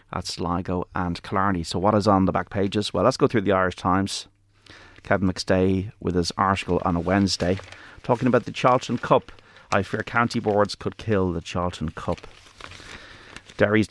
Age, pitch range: 30-49, 90-105 Hz